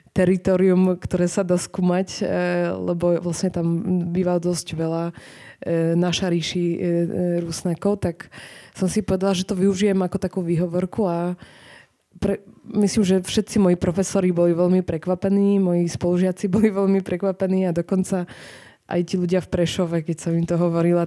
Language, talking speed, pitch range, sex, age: Slovak, 140 wpm, 175-190 Hz, female, 20-39